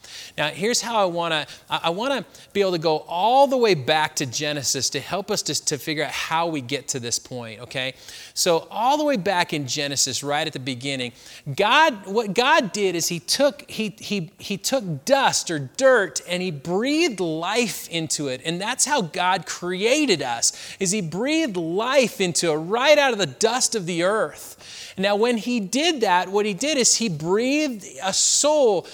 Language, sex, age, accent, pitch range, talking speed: English, male, 30-49, American, 160-240 Hz, 195 wpm